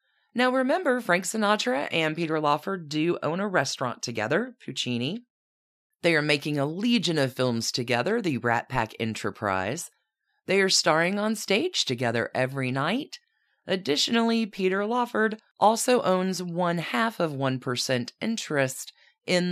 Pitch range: 140-215 Hz